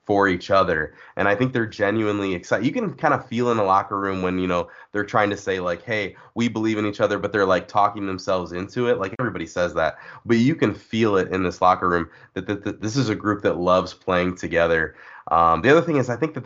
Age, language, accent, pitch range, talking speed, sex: 20-39, English, American, 90-110 Hz, 260 wpm, male